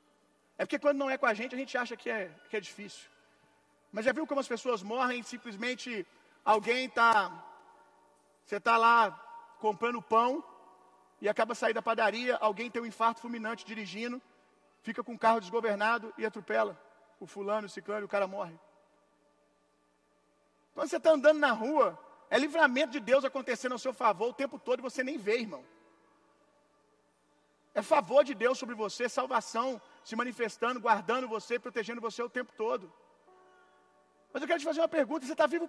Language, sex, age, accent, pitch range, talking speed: Gujarati, male, 40-59, Brazilian, 225-295 Hz, 175 wpm